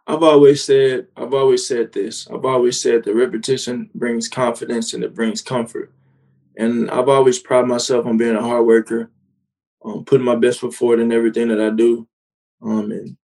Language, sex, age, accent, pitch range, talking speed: English, male, 20-39, American, 115-145 Hz, 185 wpm